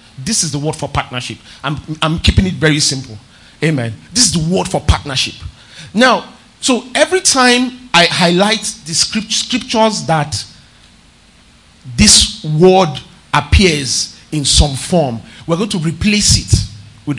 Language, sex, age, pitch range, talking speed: English, male, 40-59, 135-205 Hz, 140 wpm